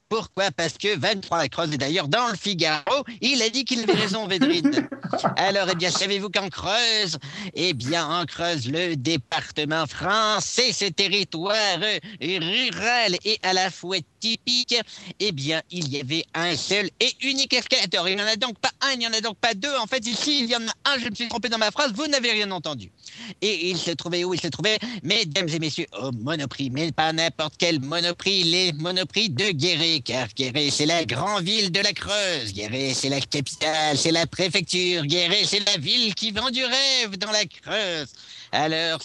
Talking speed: 205 wpm